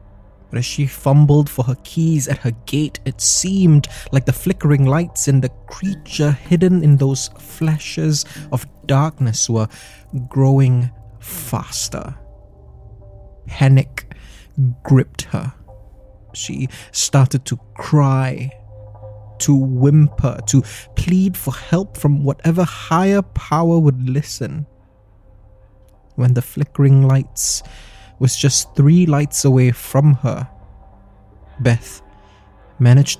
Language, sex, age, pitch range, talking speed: English, male, 20-39, 105-140 Hz, 110 wpm